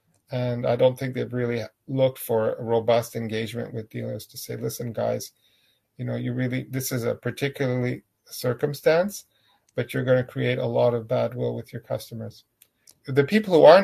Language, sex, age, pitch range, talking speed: English, male, 40-59, 110-125 Hz, 185 wpm